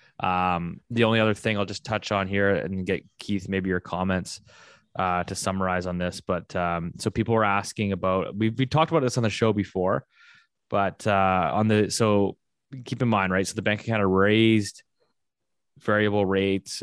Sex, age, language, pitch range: male, 20-39, English, 95-110 Hz